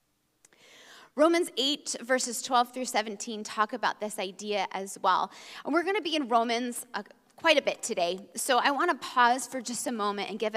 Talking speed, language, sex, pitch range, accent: 200 wpm, English, female, 215-295 Hz, American